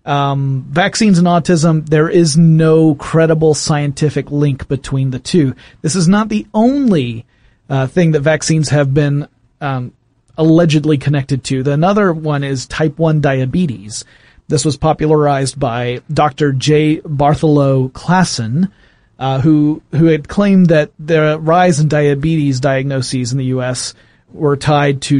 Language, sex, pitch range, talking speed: English, male, 135-170 Hz, 145 wpm